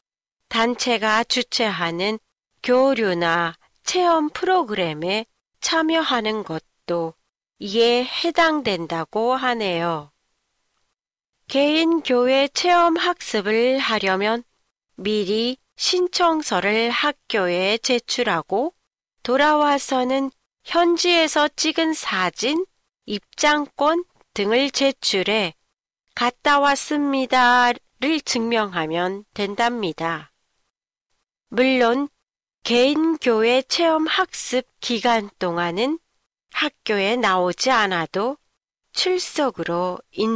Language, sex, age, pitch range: Japanese, female, 40-59, 200-295 Hz